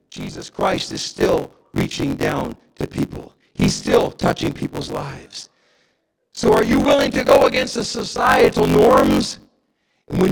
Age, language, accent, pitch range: 50-69, English, American, 265-320 Hz